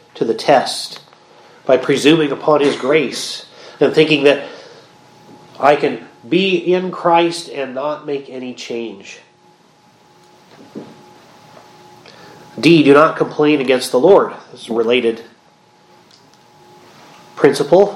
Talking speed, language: 105 wpm, English